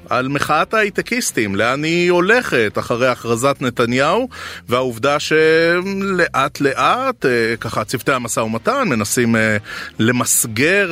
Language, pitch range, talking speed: Hebrew, 120-155 Hz, 100 wpm